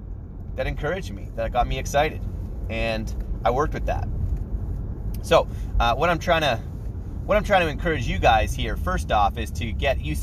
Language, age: English, 30-49